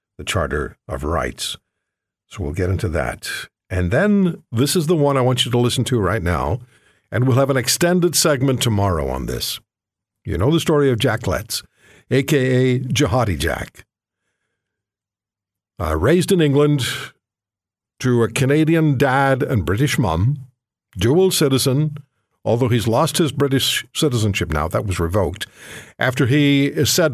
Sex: male